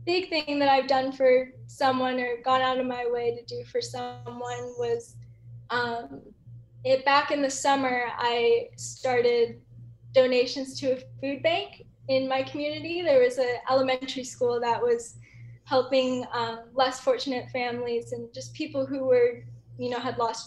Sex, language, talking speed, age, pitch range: female, English, 165 wpm, 10-29, 170-265 Hz